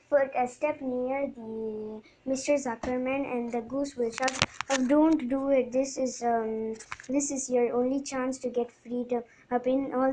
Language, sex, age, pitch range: Tamil, male, 20-39, 235-265 Hz